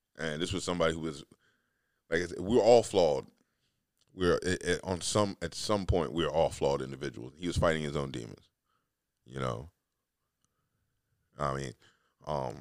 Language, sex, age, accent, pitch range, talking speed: English, male, 20-39, American, 75-90 Hz, 180 wpm